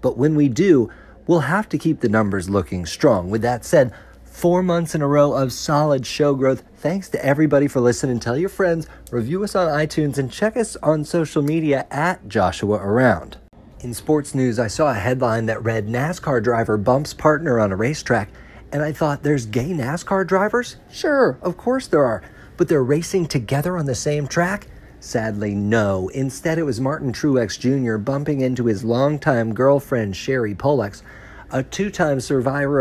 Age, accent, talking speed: 40-59, American, 180 wpm